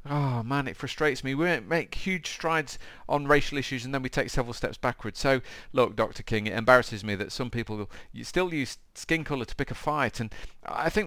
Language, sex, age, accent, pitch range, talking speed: English, male, 40-59, British, 100-140 Hz, 215 wpm